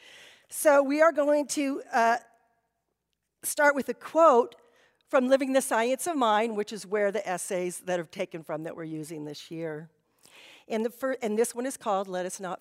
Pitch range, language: 215-295 Hz, English